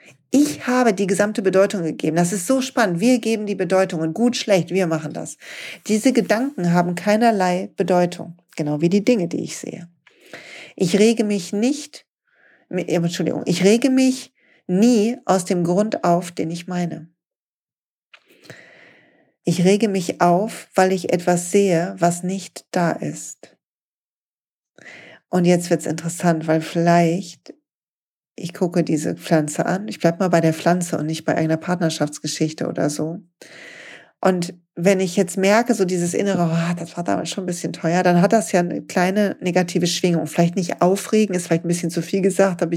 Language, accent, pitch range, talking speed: German, German, 170-210 Hz, 170 wpm